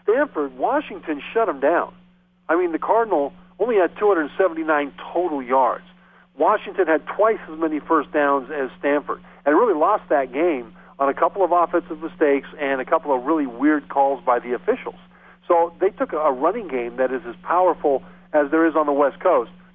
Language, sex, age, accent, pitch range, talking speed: English, male, 50-69, American, 145-190 Hz, 185 wpm